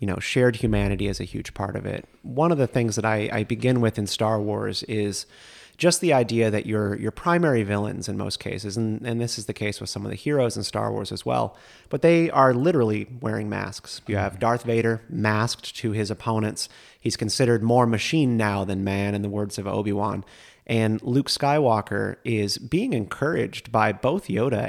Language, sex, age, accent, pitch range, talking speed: English, male, 30-49, American, 100-115 Hz, 205 wpm